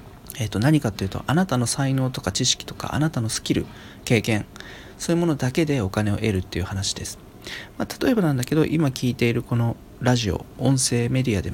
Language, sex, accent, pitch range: Japanese, male, native, 100-140 Hz